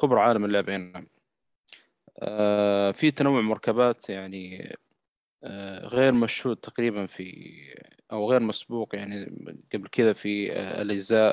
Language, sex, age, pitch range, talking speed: Arabic, male, 20-39, 100-115 Hz, 120 wpm